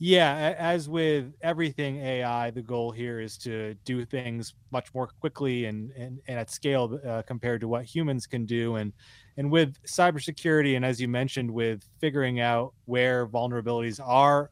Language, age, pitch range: English, 30-49, 115-135 Hz